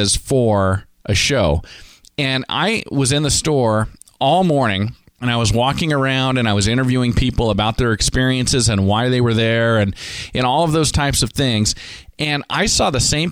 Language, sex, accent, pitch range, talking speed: English, male, American, 105-135 Hz, 190 wpm